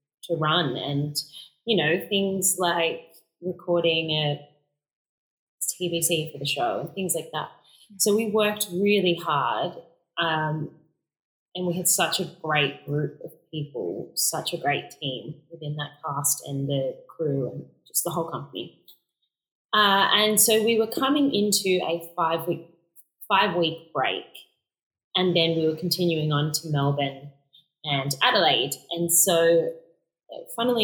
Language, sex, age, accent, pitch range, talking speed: English, female, 20-39, Australian, 150-180 Hz, 140 wpm